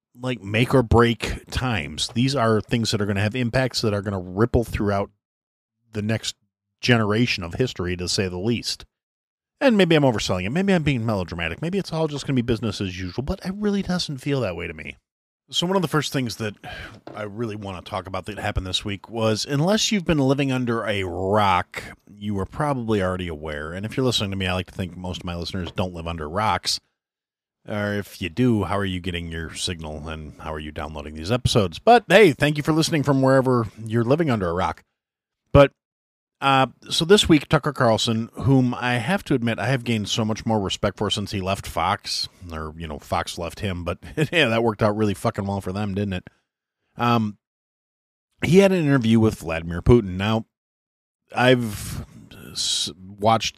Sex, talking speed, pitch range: male, 210 wpm, 95-130 Hz